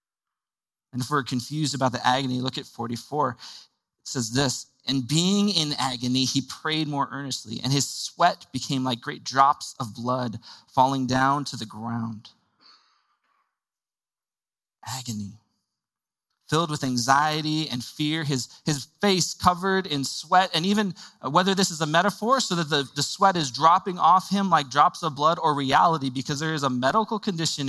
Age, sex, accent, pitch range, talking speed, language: 20-39, male, American, 125-165 Hz, 165 wpm, English